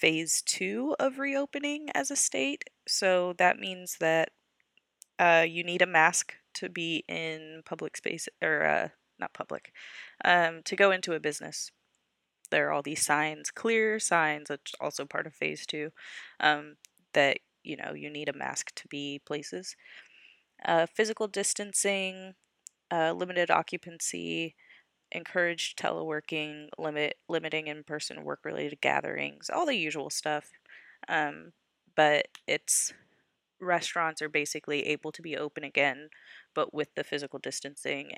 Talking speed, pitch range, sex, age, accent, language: 140 wpm, 150-190 Hz, female, 20-39, American, English